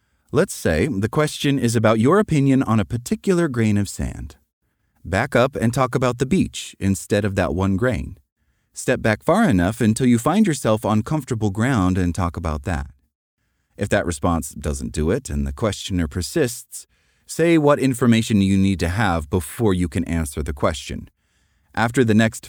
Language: English